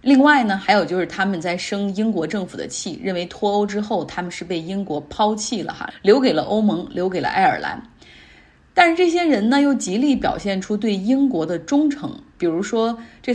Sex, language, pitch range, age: female, Chinese, 175-230 Hz, 20-39